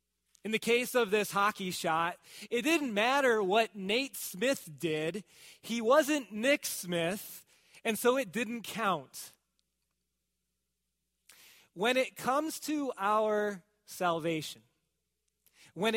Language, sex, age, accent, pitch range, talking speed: English, male, 30-49, American, 185-250 Hz, 115 wpm